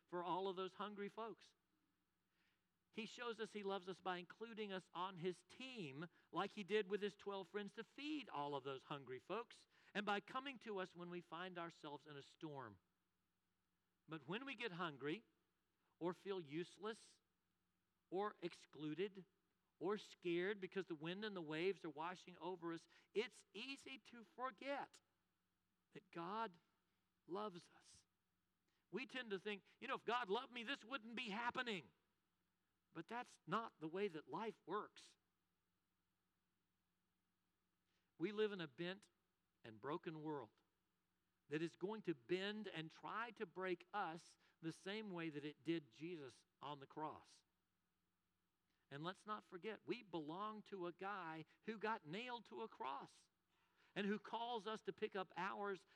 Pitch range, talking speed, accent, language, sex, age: 165-215 Hz, 160 wpm, American, English, male, 50-69